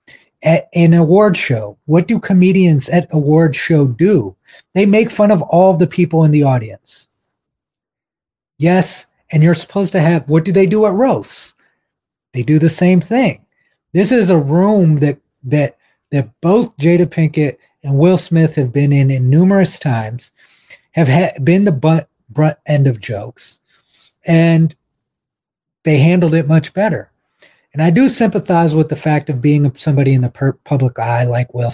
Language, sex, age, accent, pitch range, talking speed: English, male, 30-49, American, 135-170 Hz, 170 wpm